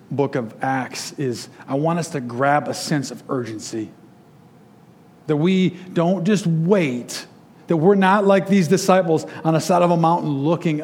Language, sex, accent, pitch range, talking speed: English, male, American, 150-190 Hz, 170 wpm